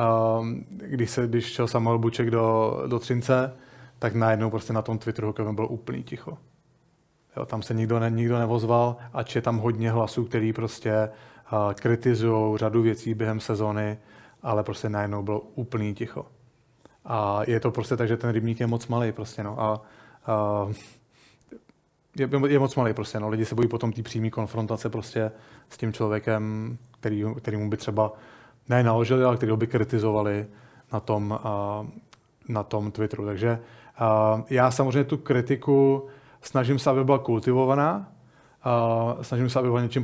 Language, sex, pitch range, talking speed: Czech, male, 110-125 Hz, 160 wpm